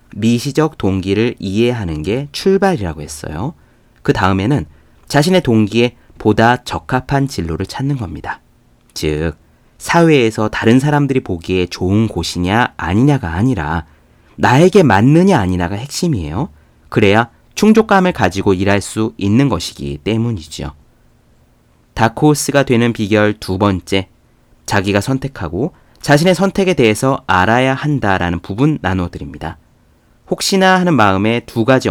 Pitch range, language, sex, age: 85-140 Hz, Korean, male, 30-49